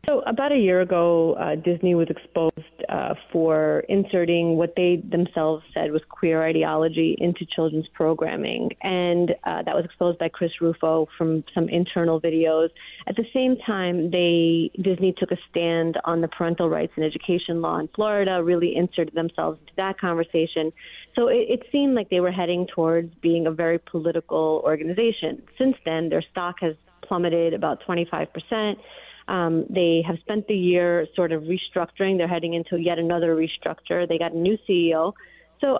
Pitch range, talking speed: 165-180 Hz, 170 wpm